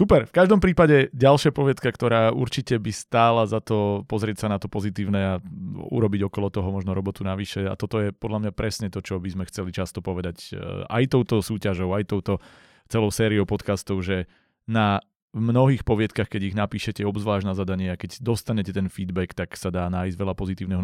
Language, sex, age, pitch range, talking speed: Slovak, male, 30-49, 90-110 Hz, 190 wpm